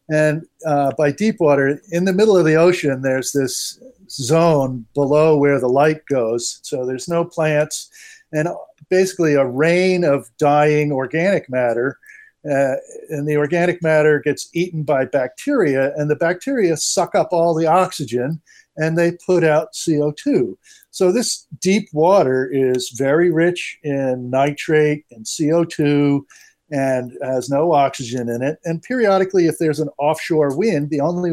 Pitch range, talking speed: 140-175 Hz, 150 wpm